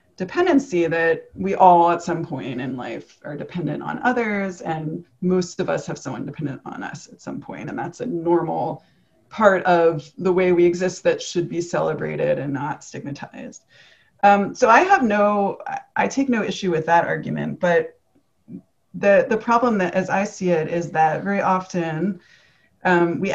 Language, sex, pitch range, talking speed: English, female, 170-200 Hz, 175 wpm